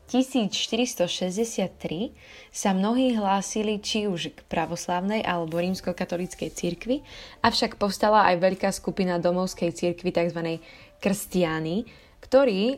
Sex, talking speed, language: female, 100 wpm, Slovak